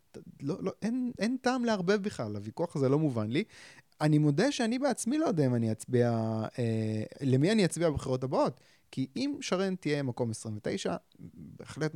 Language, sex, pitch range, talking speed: Hebrew, male, 120-160 Hz, 170 wpm